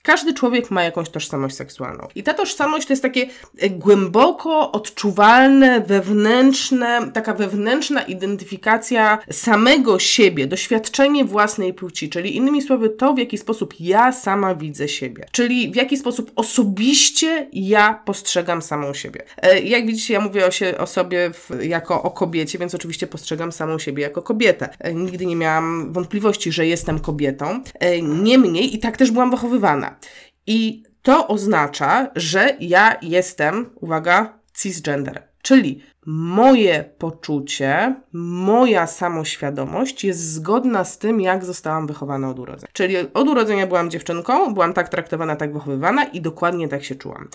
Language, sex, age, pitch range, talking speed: Polish, female, 20-39, 170-235 Hz, 140 wpm